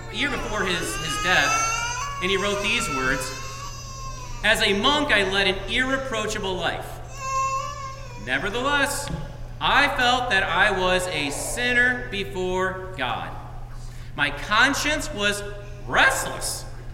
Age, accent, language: 40-59, American, English